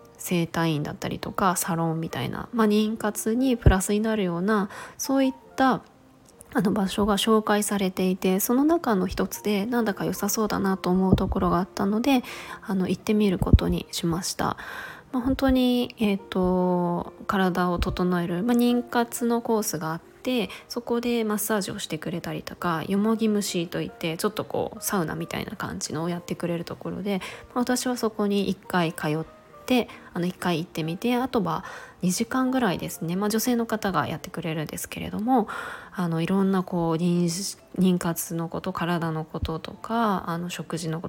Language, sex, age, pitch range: Japanese, female, 20-39, 175-230 Hz